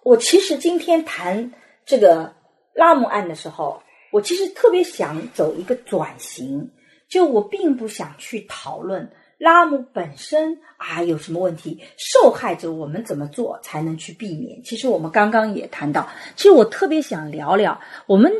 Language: Chinese